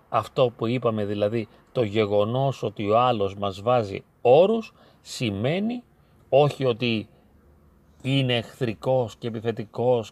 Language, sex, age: Greek, male, 40-59